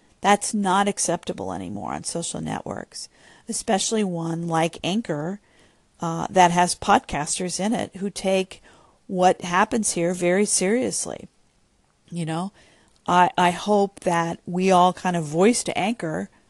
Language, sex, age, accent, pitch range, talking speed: English, female, 50-69, American, 170-210 Hz, 135 wpm